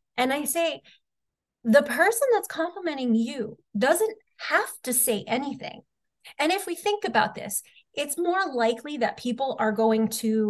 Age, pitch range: 30-49, 215-280 Hz